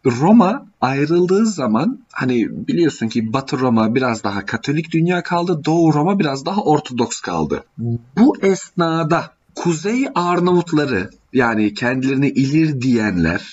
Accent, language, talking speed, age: native, Turkish, 120 wpm, 40-59